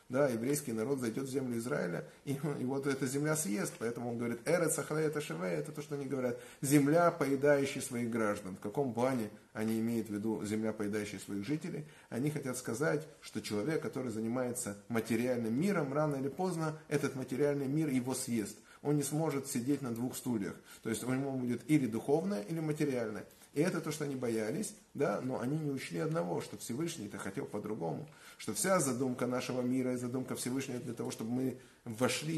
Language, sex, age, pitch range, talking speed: Russian, male, 30-49, 115-155 Hz, 185 wpm